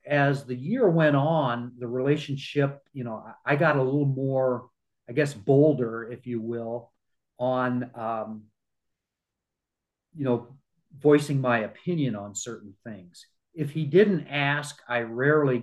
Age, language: 40-59, English